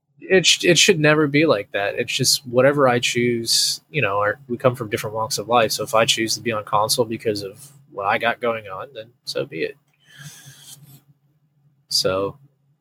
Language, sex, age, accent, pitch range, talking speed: English, male, 20-39, American, 115-145 Hz, 200 wpm